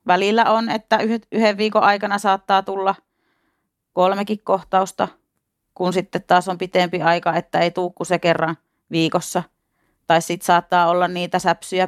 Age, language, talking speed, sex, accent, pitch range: 30-49, Finnish, 140 wpm, female, native, 165-195 Hz